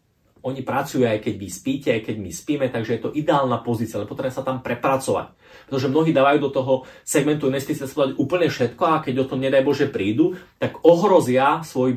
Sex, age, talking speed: male, 30-49, 195 wpm